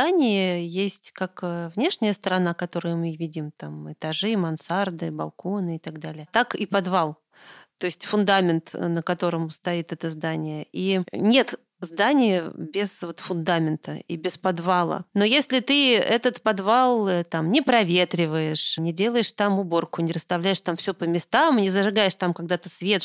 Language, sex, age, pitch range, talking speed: Russian, female, 30-49, 175-220 Hz, 145 wpm